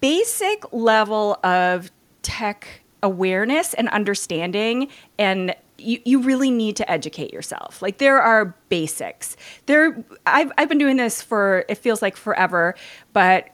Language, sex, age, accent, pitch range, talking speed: English, female, 30-49, American, 200-305 Hz, 135 wpm